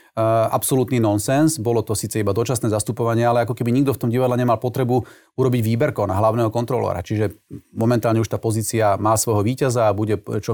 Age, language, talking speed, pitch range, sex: 30-49, Slovak, 190 wpm, 110-130 Hz, male